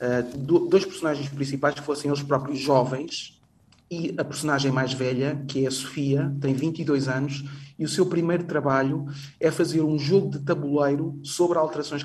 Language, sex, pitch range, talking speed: Portuguese, male, 135-160 Hz, 165 wpm